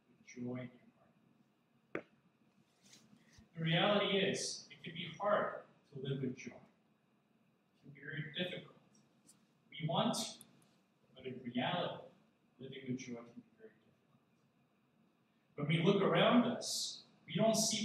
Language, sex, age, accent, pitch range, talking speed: English, male, 40-59, American, 145-205 Hz, 135 wpm